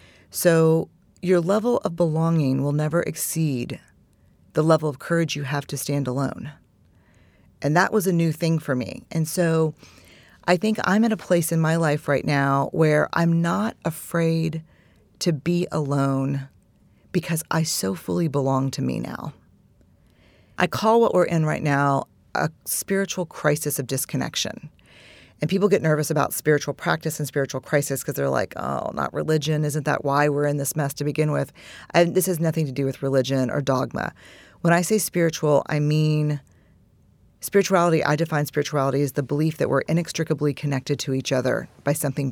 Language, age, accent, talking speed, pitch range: English, 40-59, American, 175 wpm, 140-165 Hz